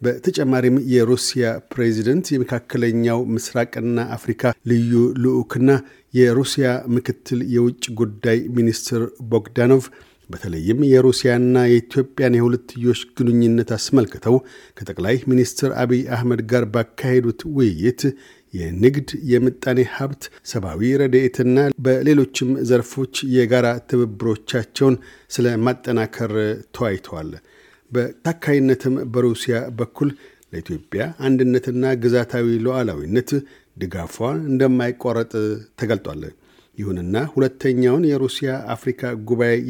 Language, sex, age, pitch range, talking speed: Amharic, male, 50-69, 120-130 Hz, 80 wpm